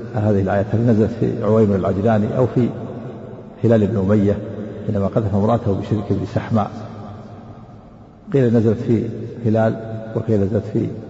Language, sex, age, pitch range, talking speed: Arabic, male, 50-69, 110-120 Hz, 125 wpm